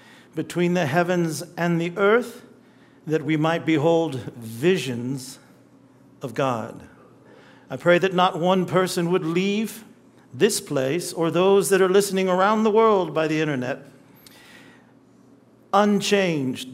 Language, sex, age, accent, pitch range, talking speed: English, male, 50-69, American, 160-210 Hz, 125 wpm